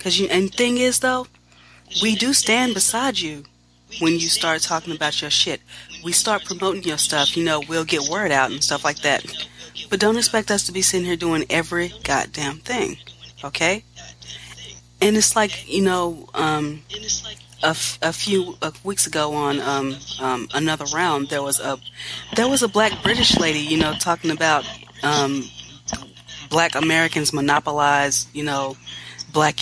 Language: English